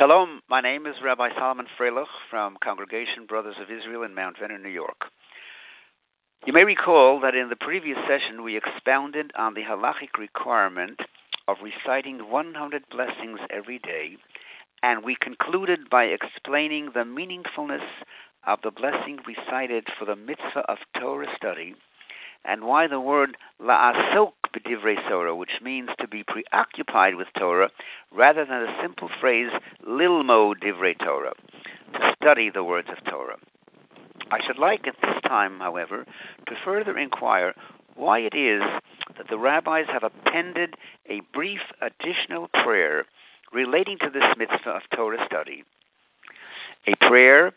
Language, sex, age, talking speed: English, male, 60-79, 140 wpm